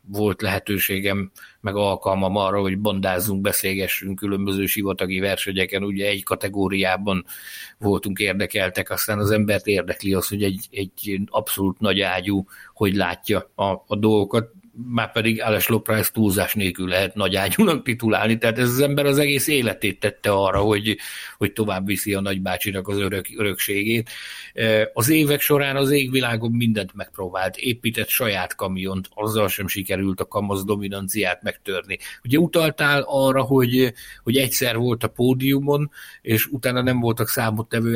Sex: male